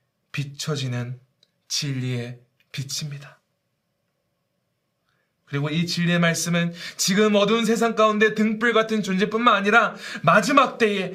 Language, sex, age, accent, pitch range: Korean, male, 20-39, native, 155-220 Hz